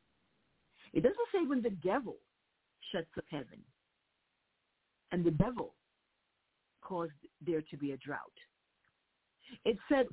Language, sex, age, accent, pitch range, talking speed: English, female, 50-69, American, 185-275 Hz, 120 wpm